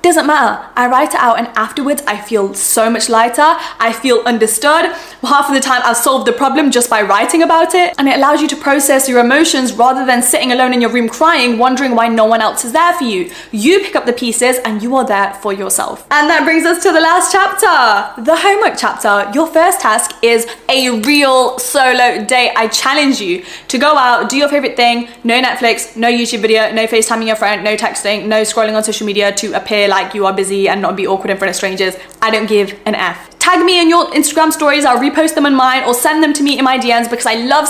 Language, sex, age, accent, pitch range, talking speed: English, female, 10-29, British, 225-295 Hz, 240 wpm